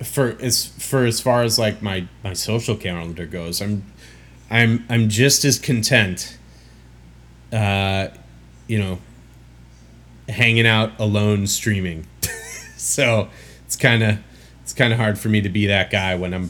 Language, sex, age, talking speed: English, male, 30-49, 140 wpm